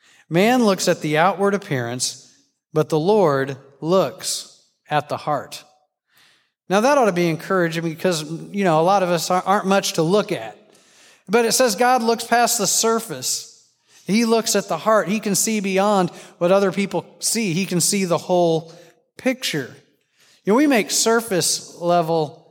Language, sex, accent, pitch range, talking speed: English, male, American, 155-195 Hz, 170 wpm